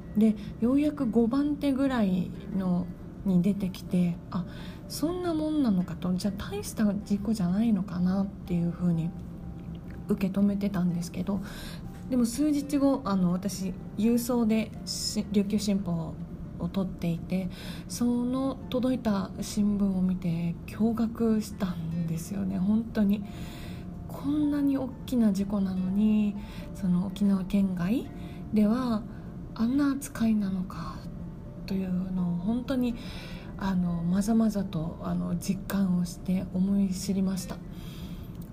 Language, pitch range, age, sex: Japanese, 180-215 Hz, 20-39, female